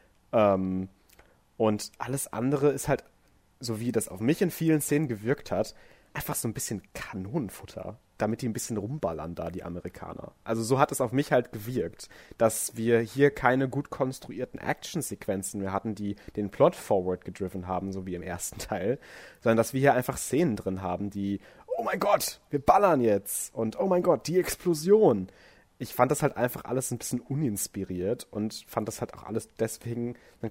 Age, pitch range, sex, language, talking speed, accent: 30-49, 100-125 Hz, male, German, 185 wpm, German